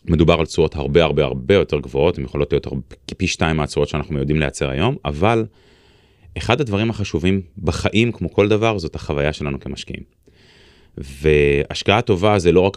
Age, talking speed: 30-49, 165 wpm